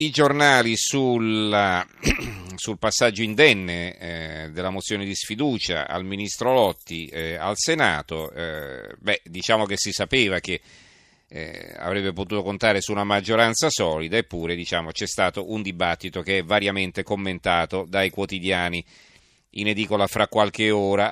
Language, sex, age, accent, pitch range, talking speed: Italian, male, 40-59, native, 90-110 Hz, 140 wpm